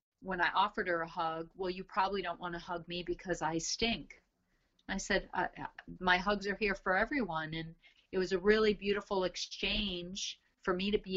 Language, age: English, 40-59